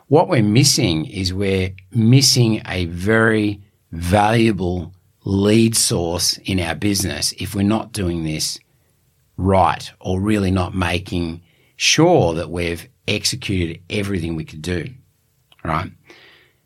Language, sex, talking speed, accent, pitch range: English, male, 120 wpm, Australian, 95-125 Hz